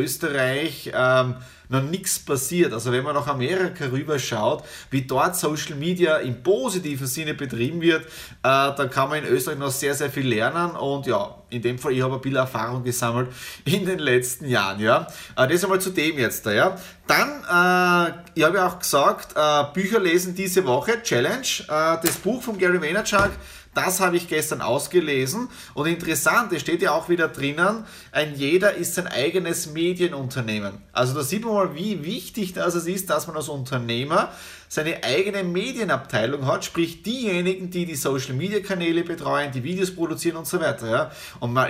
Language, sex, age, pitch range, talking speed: German, male, 30-49, 135-180 Hz, 185 wpm